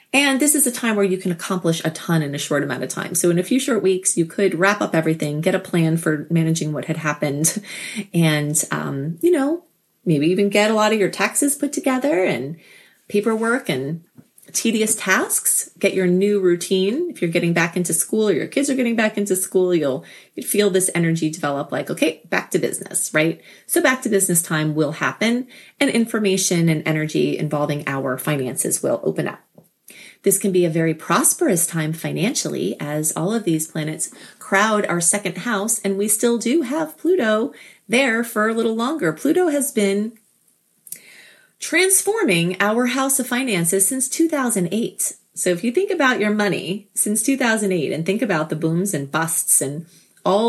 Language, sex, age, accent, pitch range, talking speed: English, female, 30-49, American, 165-230 Hz, 185 wpm